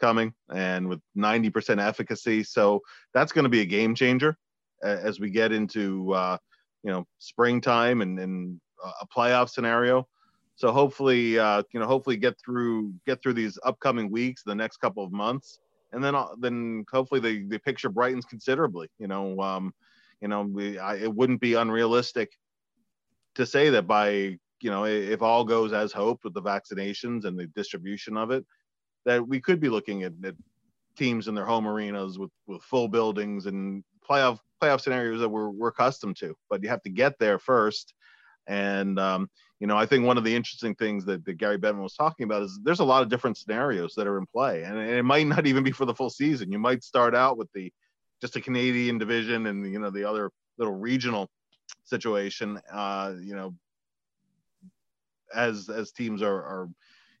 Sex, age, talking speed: male, 30-49, 190 wpm